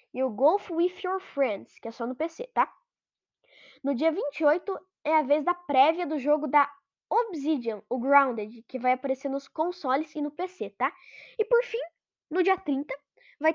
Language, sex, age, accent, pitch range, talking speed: Portuguese, female, 10-29, Brazilian, 250-335 Hz, 185 wpm